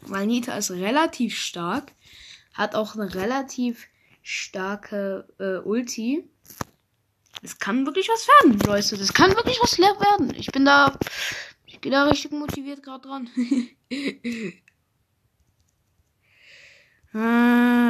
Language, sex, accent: German, female, German